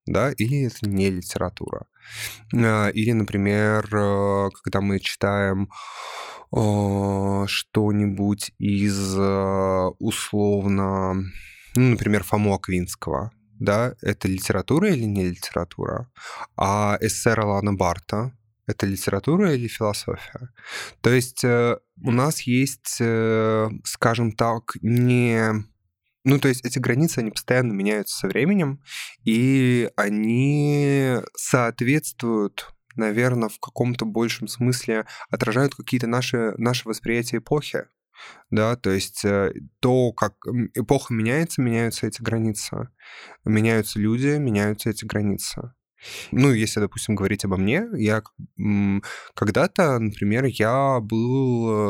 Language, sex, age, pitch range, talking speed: Russian, male, 20-39, 100-125 Hz, 100 wpm